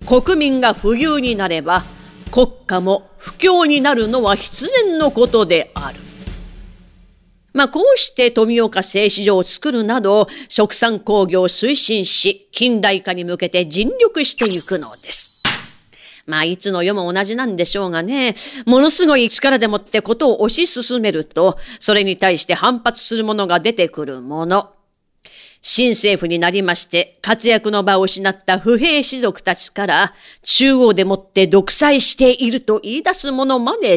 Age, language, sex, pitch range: 40-59, Japanese, female, 190-260 Hz